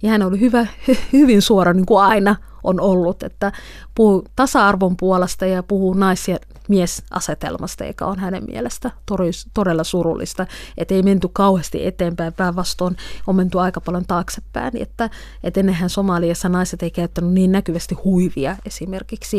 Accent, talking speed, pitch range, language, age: native, 150 wpm, 175-200 Hz, Finnish, 30-49